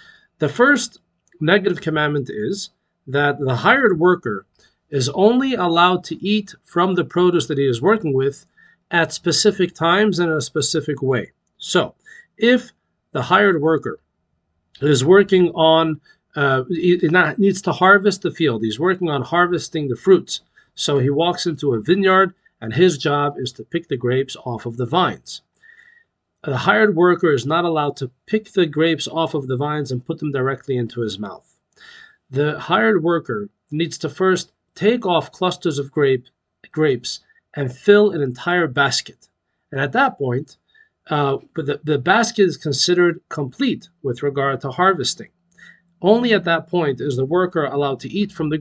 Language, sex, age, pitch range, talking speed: English, male, 40-59, 140-185 Hz, 170 wpm